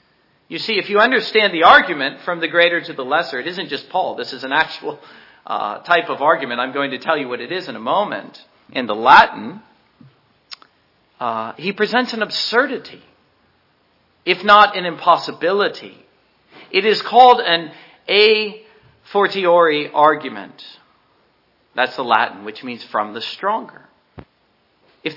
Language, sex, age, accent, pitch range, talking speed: English, male, 50-69, American, 145-205 Hz, 155 wpm